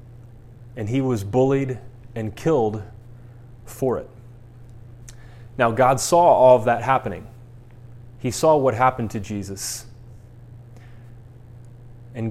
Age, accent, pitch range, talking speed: 30-49, American, 115-130 Hz, 105 wpm